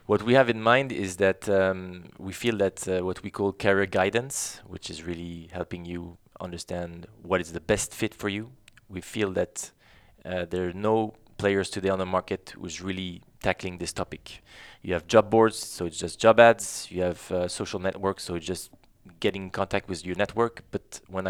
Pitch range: 90-105 Hz